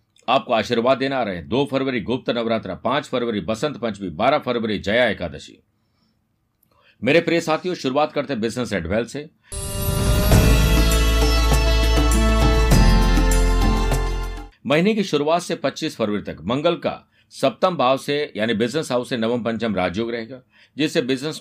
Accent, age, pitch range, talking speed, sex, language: native, 50-69, 110-150 Hz, 130 wpm, male, Hindi